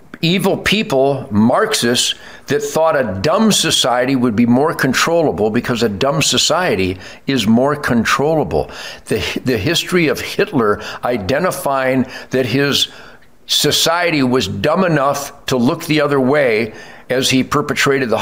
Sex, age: male, 60-79